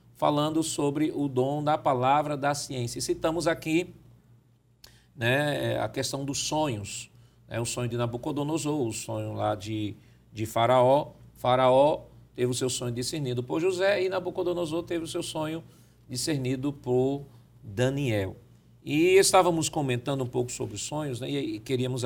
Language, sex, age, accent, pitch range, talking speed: Portuguese, male, 50-69, Brazilian, 120-150 Hz, 145 wpm